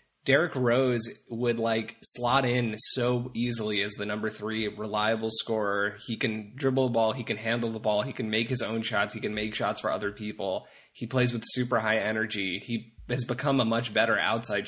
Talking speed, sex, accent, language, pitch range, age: 205 wpm, male, American, English, 105-125 Hz, 20-39